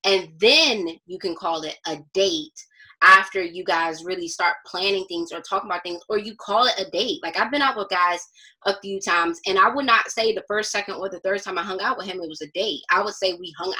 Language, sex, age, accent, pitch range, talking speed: English, female, 20-39, American, 175-215 Hz, 260 wpm